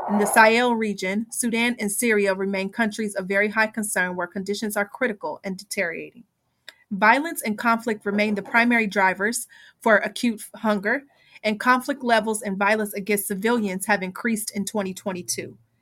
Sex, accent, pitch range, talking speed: female, American, 195-230 Hz, 150 wpm